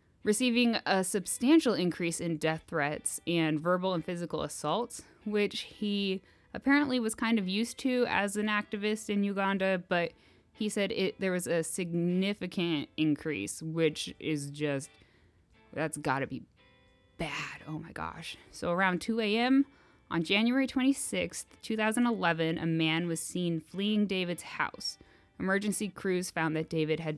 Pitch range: 155-210 Hz